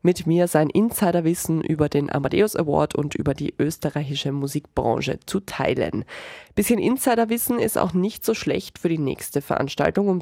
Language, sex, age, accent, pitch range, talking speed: German, female, 20-39, German, 160-195 Hz, 165 wpm